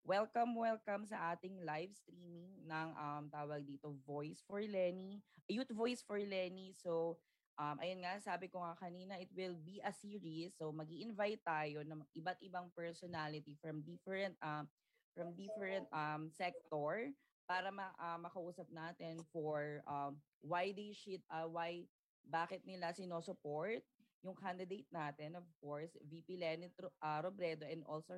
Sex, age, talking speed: female, 20-39, 150 wpm